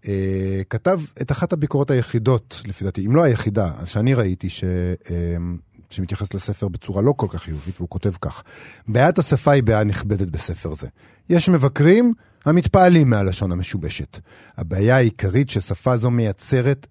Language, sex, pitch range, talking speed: Hebrew, male, 100-135 Hz, 145 wpm